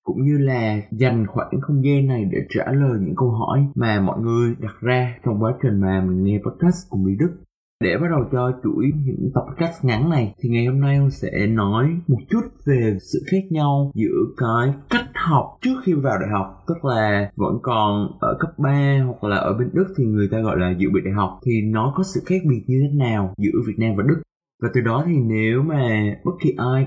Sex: male